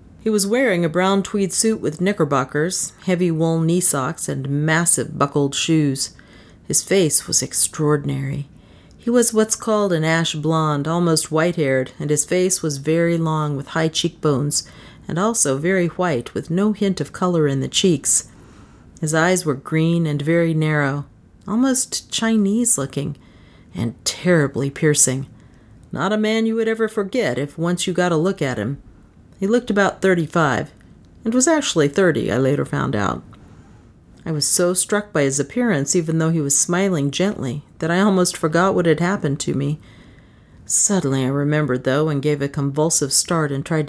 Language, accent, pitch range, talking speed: English, American, 145-185 Hz, 170 wpm